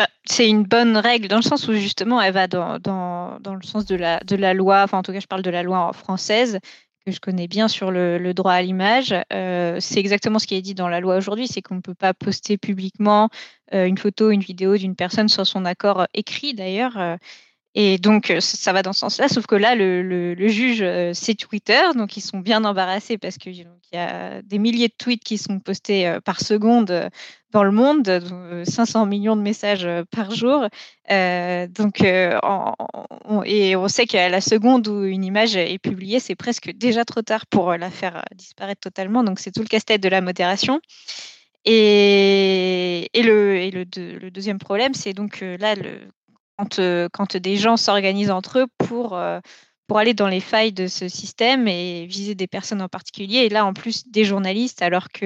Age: 20-39